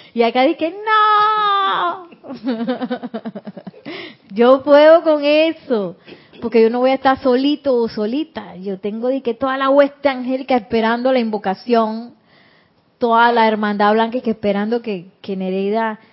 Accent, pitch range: American, 210-290 Hz